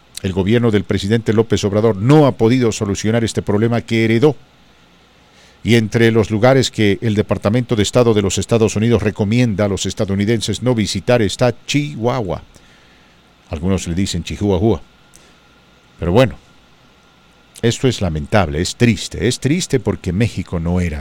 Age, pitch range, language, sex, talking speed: 50-69, 95-125 Hz, English, male, 150 wpm